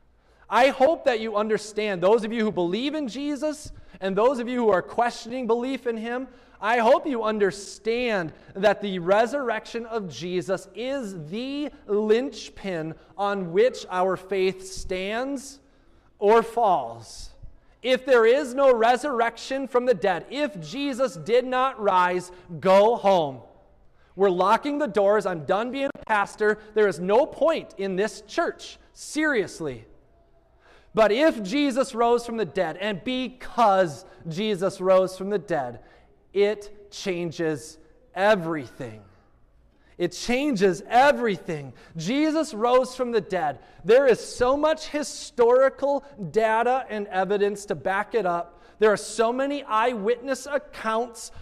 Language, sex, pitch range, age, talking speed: English, male, 190-255 Hz, 30-49, 135 wpm